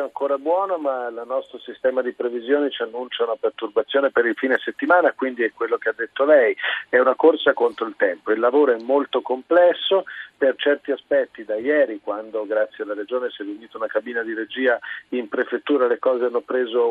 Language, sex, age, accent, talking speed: Italian, male, 50-69, native, 200 wpm